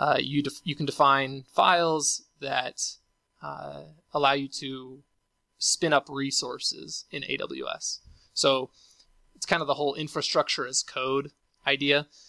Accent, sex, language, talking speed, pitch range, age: American, male, English, 130 wpm, 135-160 Hz, 20-39